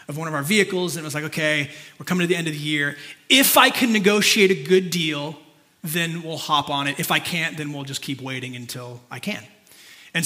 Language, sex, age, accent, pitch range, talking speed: English, male, 30-49, American, 155-195 Hz, 245 wpm